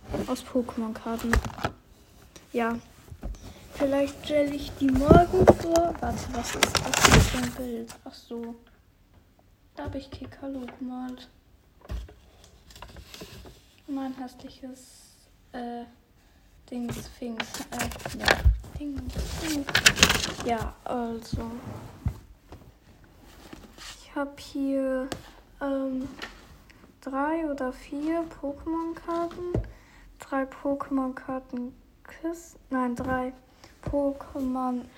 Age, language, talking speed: 10-29, German, 75 wpm